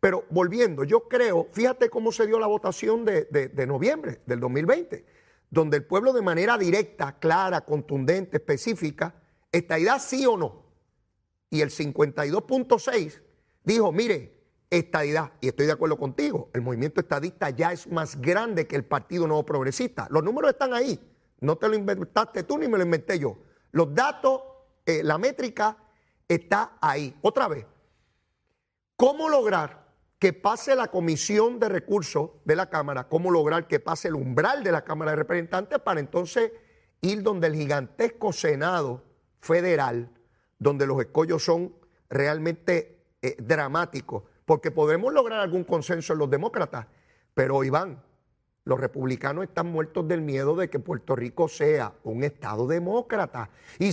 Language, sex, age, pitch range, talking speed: Spanish, male, 40-59, 150-235 Hz, 150 wpm